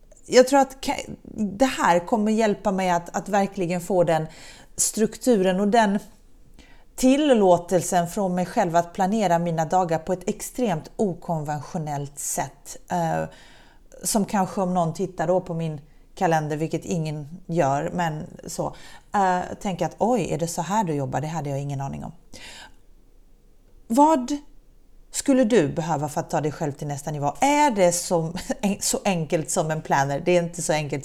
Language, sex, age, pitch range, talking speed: Swedish, female, 30-49, 165-235 Hz, 160 wpm